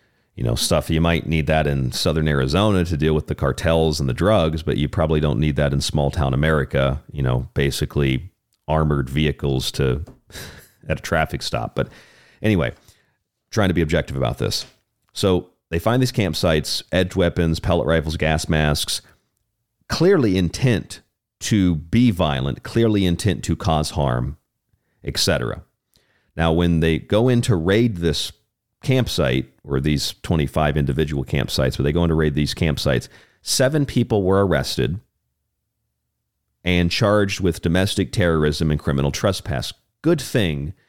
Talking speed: 155 wpm